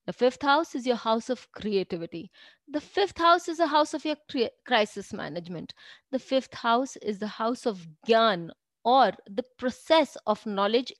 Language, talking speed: English, 175 wpm